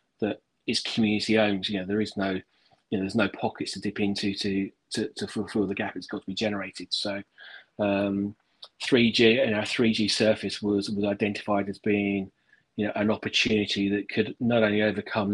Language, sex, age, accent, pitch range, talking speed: English, male, 30-49, British, 100-110 Hz, 190 wpm